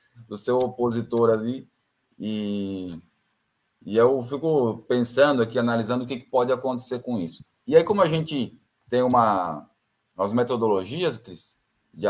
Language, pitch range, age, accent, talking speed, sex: Portuguese, 105-140 Hz, 20-39, Brazilian, 145 wpm, male